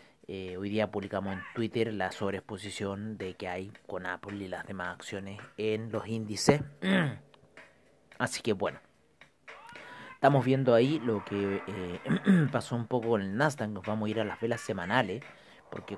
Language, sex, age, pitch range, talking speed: Spanish, male, 30-49, 105-140 Hz, 160 wpm